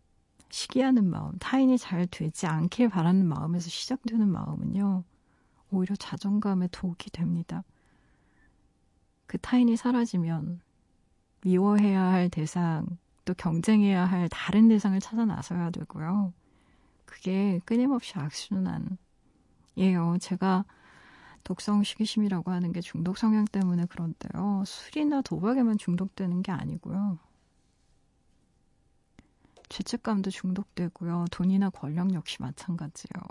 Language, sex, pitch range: Korean, female, 175-210 Hz